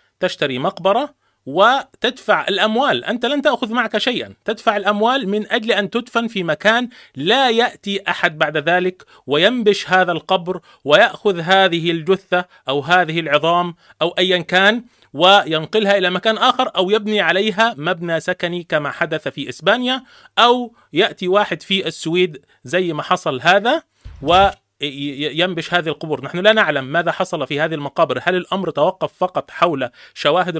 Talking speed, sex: 145 wpm, male